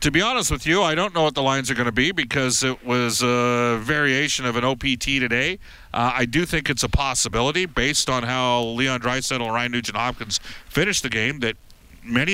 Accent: American